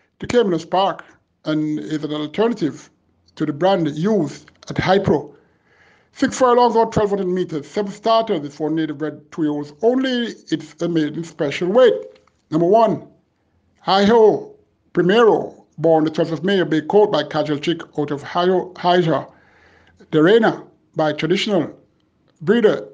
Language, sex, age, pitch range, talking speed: English, male, 60-79, 155-205 Hz, 140 wpm